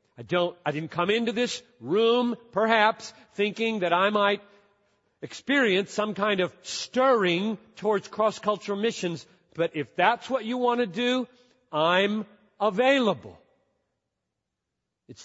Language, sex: English, male